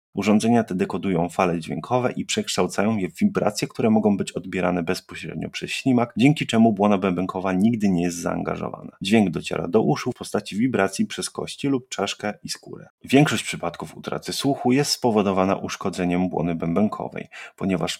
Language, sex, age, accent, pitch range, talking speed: Polish, male, 30-49, native, 95-120 Hz, 160 wpm